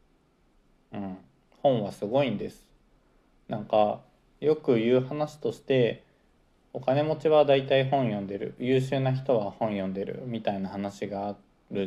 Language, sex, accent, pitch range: Japanese, male, native, 100-140 Hz